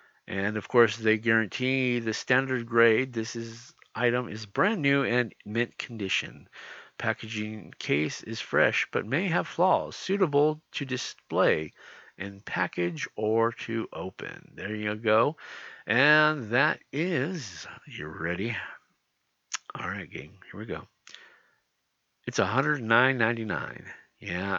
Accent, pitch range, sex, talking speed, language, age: American, 110-150 Hz, male, 120 wpm, English, 50-69